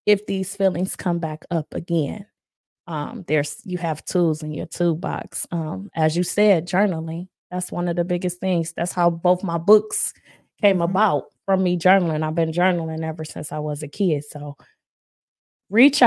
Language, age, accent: English, 20-39, American